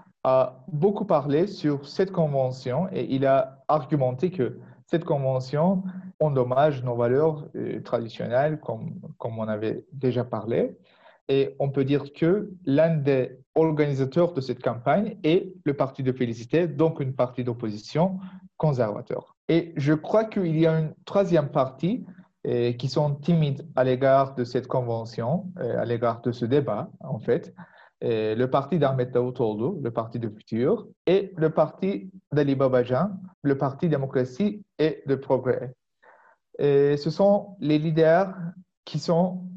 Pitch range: 130-170 Hz